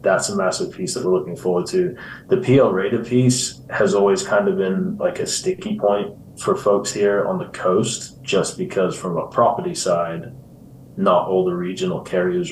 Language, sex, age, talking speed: English, male, 20-39, 185 wpm